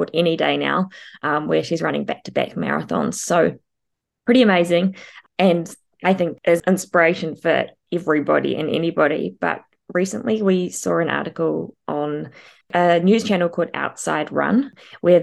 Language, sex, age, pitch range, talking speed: English, female, 20-39, 160-190 Hz, 140 wpm